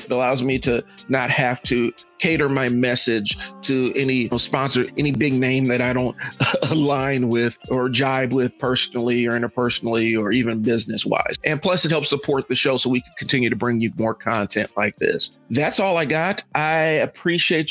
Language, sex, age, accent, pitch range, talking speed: English, male, 40-59, American, 125-145 Hz, 195 wpm